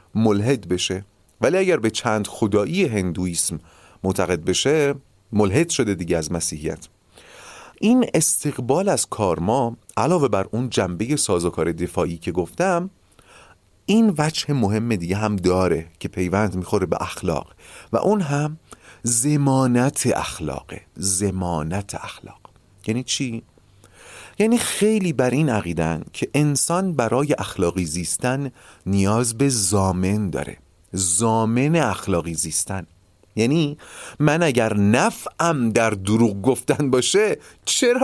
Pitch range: 95-155 Hz